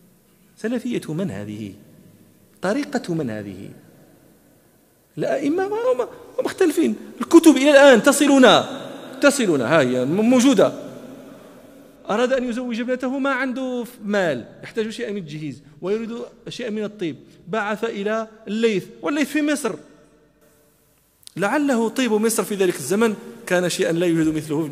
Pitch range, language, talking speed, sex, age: 170-255 Hz, Arabic, 125 wpm, male, 40-59